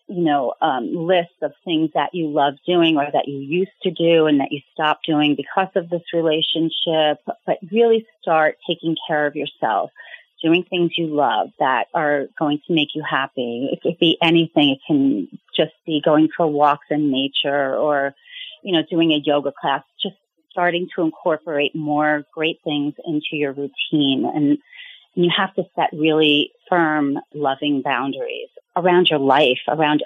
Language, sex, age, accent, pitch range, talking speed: English, female, 30-49, American, 145-170 Hz, 175 wpm